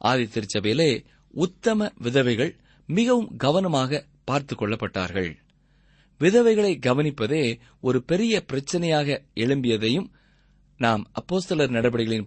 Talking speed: 80 wpm